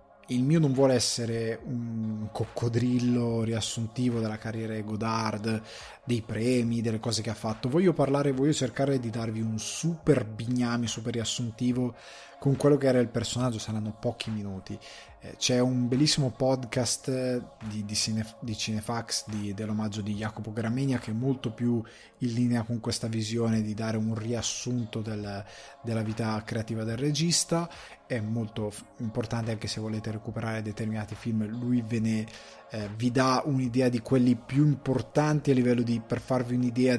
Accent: native